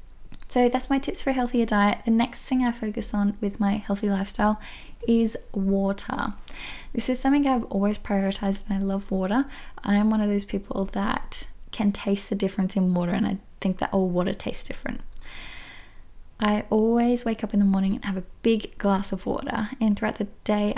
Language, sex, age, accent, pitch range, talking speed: English, female, 10-29, Australian, 195-220 Hz, 200 wpm